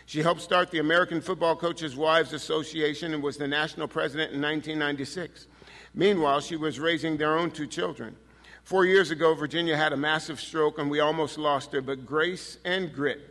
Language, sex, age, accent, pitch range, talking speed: English, male, 50-69, American, 145-165 Hz, 185 wpm